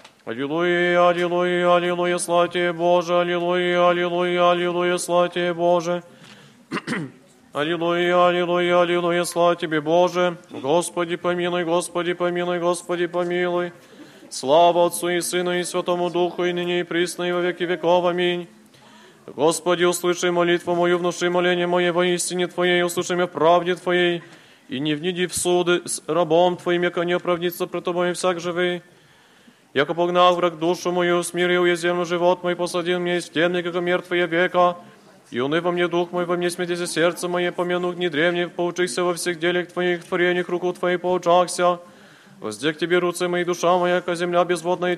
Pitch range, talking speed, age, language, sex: 175-180 Hz, 150 wpm, 30-49, Polish, male